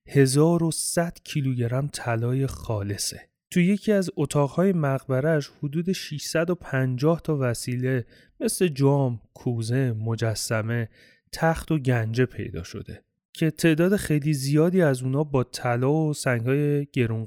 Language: Persian